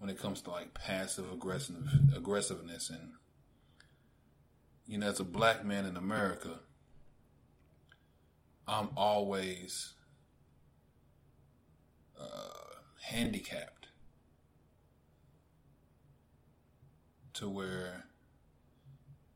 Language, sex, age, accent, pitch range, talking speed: English, male, 30-49, American, 75-125 Hz, 70 wpm